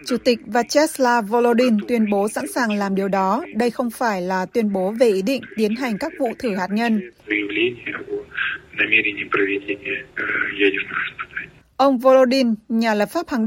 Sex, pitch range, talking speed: female, 215-260 Hz, 145 wpm